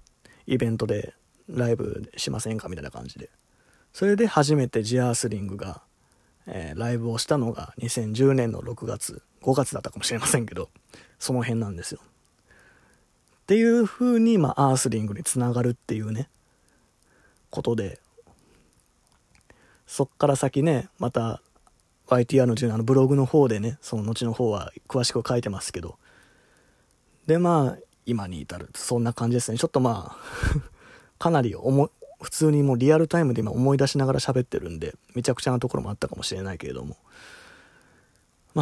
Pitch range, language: 115-145 Hz, Japanese